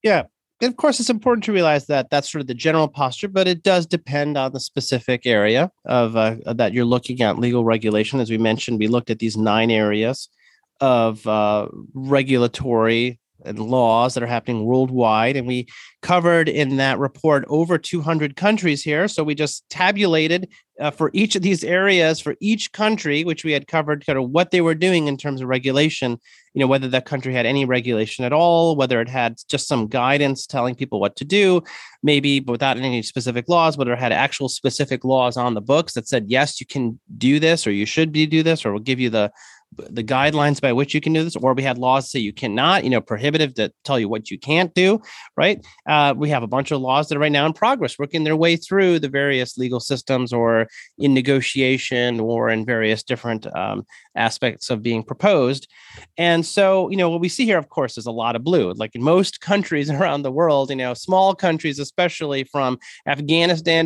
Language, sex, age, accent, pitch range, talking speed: English, male, 30-49, American, 120-160 Hz, 215 wpm